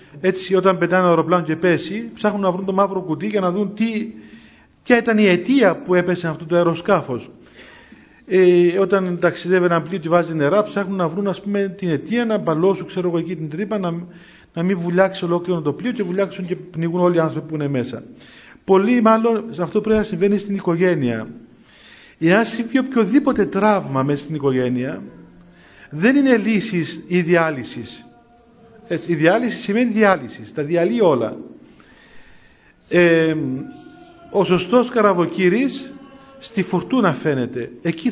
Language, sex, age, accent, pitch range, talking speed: Greek, male, 50-69, native, 165-210 Hz, 160 wpm